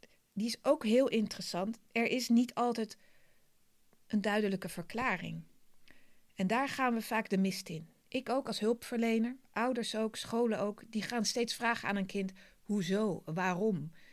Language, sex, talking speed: Dutch, female, 155 wpm